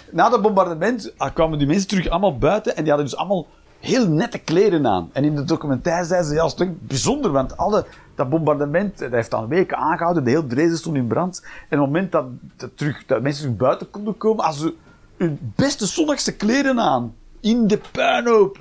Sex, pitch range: male, 150-220 Hz